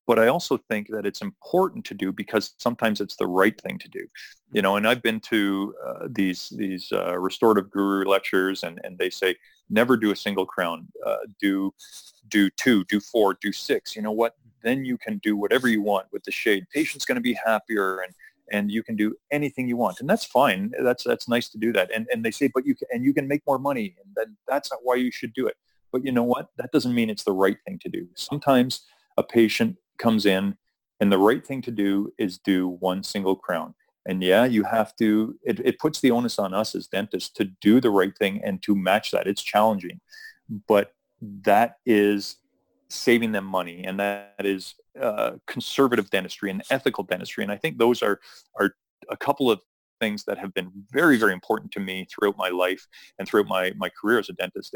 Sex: male